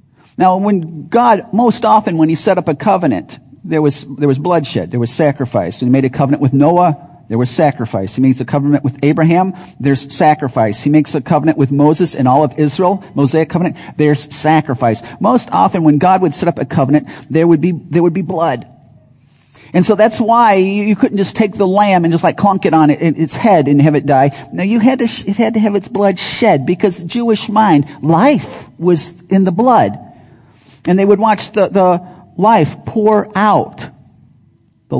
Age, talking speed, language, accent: 40-59, 205 wpm, English, American